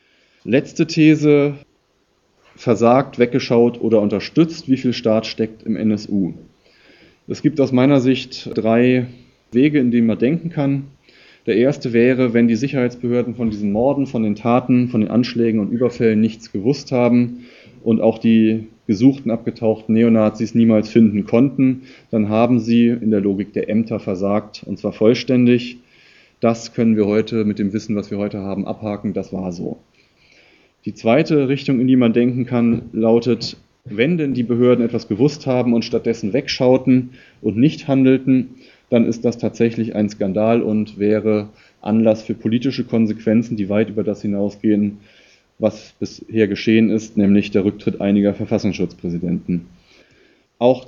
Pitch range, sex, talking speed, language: 110-125 Hz, male, 150 wpm, German